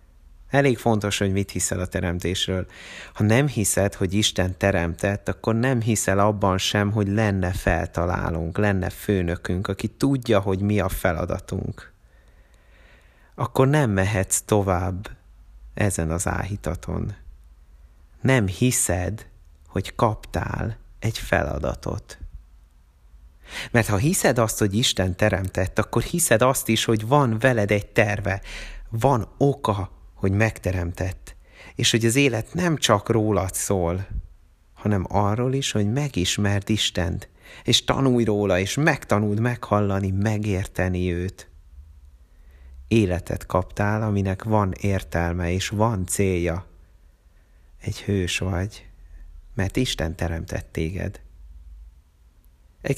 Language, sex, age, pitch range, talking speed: Hungarian, male, 30-49, 85-110 Hz, 115 wpm